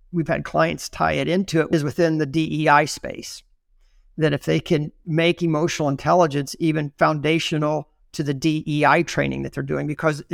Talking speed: 170 wpm